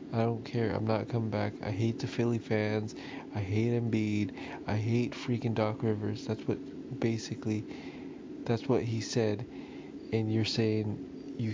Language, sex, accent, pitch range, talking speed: English, male, American, 105-120 Hz, 160 wpm